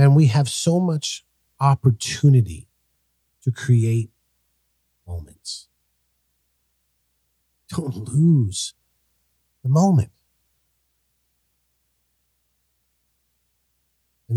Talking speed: 60 wpm